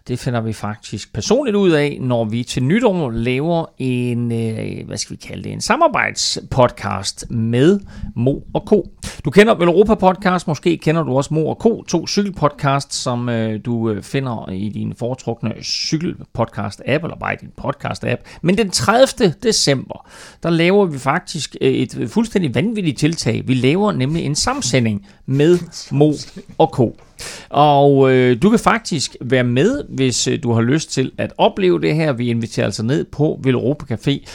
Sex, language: male, Danish